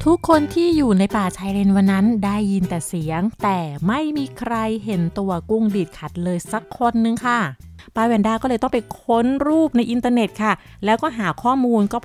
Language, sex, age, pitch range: Thai, female, 30-49, 195-255 Hz